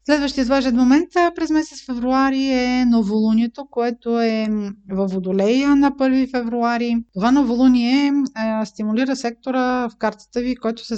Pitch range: 215-250 Hz